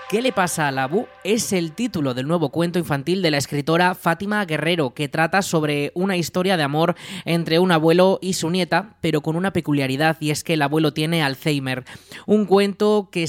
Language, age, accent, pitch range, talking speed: Spanish, 20-39, Spanish, 145-175 Hz, 205 wpm